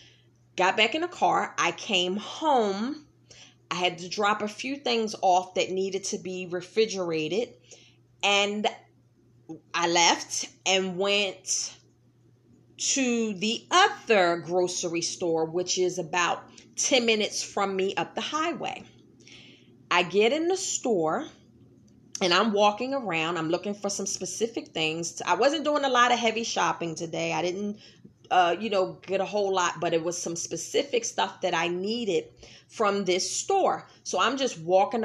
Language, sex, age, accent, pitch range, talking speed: English, female, 30-49, American, 170-225 Hz, 155 wpm